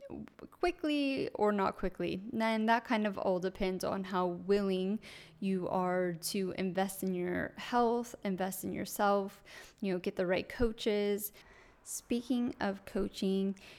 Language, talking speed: English, 140 wpm